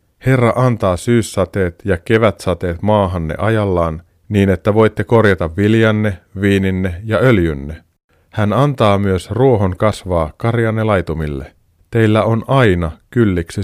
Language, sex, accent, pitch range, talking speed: Finnish, male, native, 90-115 Hz, 115 wpm